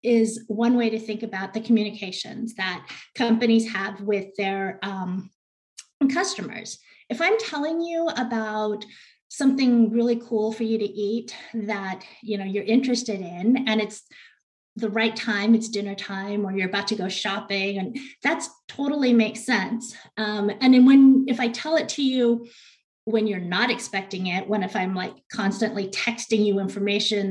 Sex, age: female, 30-49